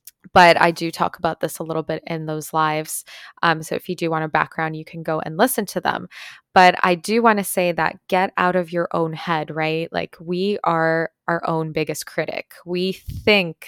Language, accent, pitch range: English, American, 160-185 Hz